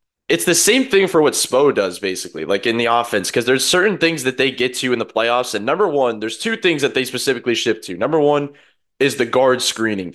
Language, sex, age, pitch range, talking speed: English, male, 20-39, 115-145 Hz, 240 wpm